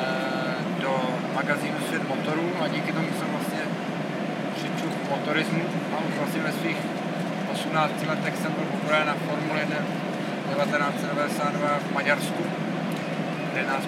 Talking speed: 125 wpm